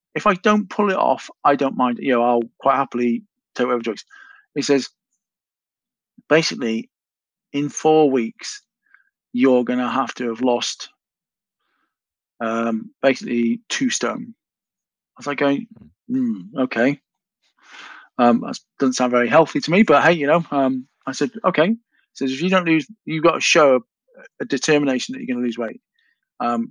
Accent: British